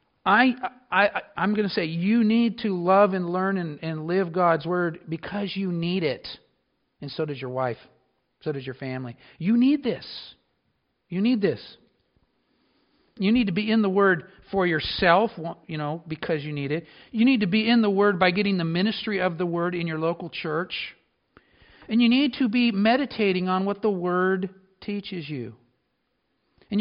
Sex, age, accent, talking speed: male, 50-69, American, 185 wpm